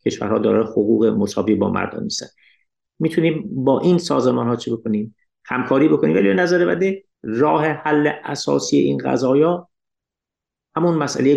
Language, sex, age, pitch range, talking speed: Persian, male, 50-69, 110-135 Hz, 130 wpm